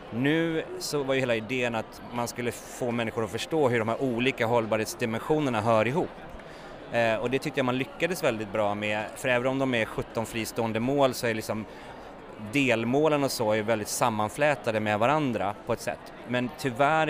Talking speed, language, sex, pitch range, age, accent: 190 wpm, Swedish, male, 110-135 Hz, 30-49, native